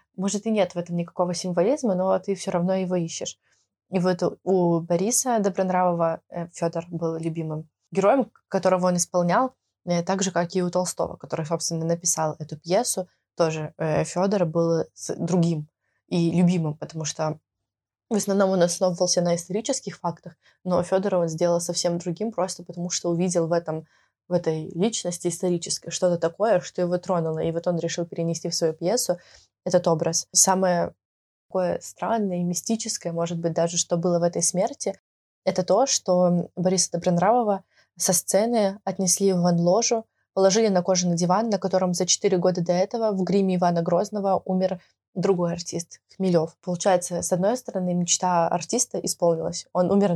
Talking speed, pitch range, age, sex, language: 155 wpm, 170-190 Hz, 20-39, female, Russian